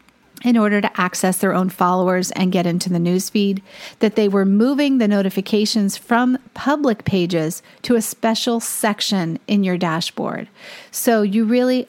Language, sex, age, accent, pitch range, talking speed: English, female, 40-59, American, 190-225 Hz, 155 wpm